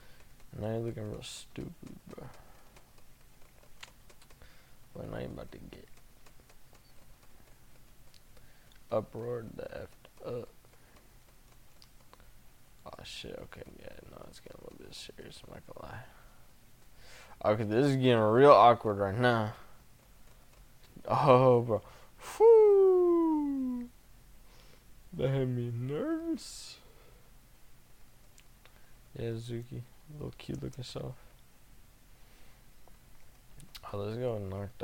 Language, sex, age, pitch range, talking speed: English, male, 20-39, 110-130 Hz, 100 wpm